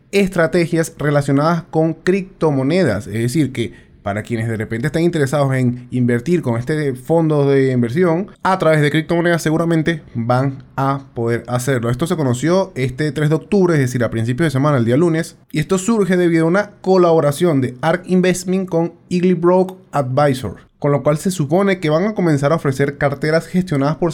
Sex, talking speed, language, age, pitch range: male, 180 wpm, Spanish, 20-39, 125-170 Hz